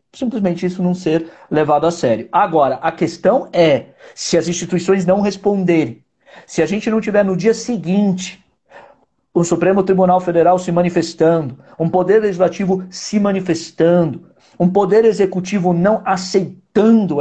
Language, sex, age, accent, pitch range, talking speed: Portuguese, male, 50-69, Brazilian, 145-190 Hz, 140 wpm